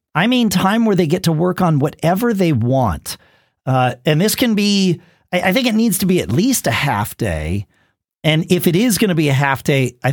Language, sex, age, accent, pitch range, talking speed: English, male, 50-69, American, 120-190 Hz, 225 wpm